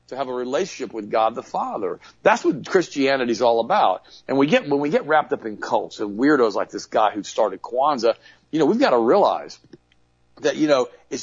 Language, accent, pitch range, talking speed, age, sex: English, American, 105-140 Hz, 225 wpm, 50-69, male